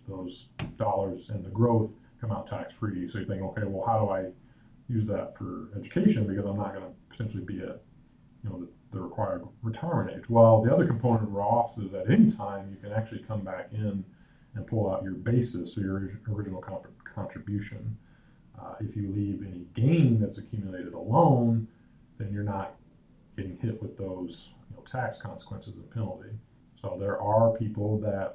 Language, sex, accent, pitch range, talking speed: English, male, American, 95-115 Hz, 175 wpm